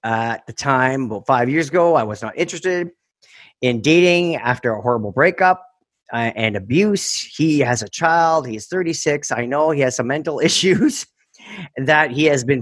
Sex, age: male, 40-59